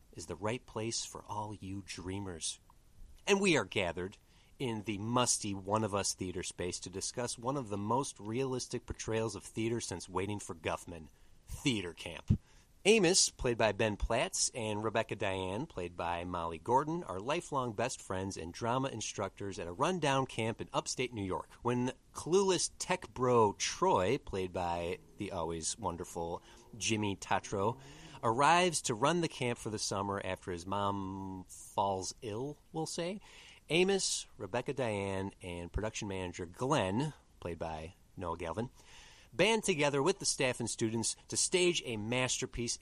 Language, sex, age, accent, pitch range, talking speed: English, male, 30-49, American, 95-125 Hz, 155 wpm